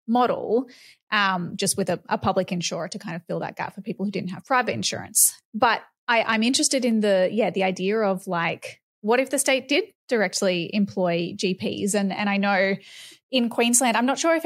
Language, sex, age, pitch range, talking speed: English, female, 20-39, 185-225 Hz, 210 wpm